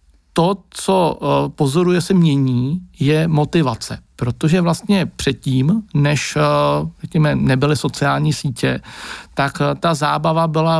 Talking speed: 120 wpm